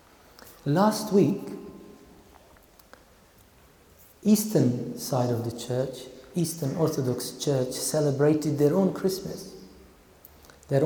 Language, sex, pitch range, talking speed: English, male, 130-205 Hz, 85 wpm